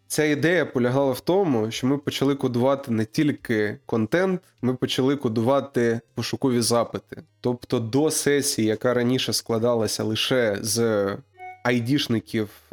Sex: male